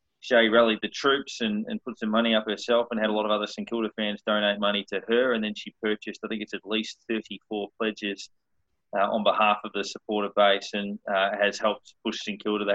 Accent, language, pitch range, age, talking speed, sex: Australian, English, 105-120 Hz, 20-39, 235 wpm, male